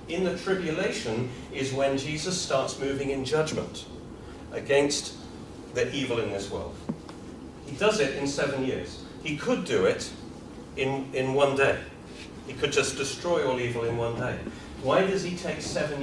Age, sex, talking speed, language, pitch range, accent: 40-59, male, 165 wpm, English, 120-155 Hz, British